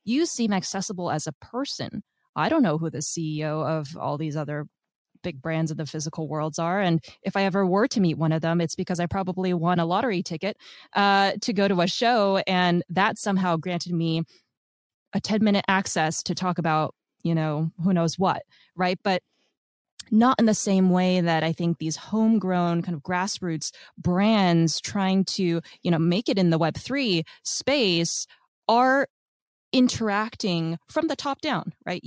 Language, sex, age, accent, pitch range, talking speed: English, female, 20-39, American, 165-200 Hz, 180 wpm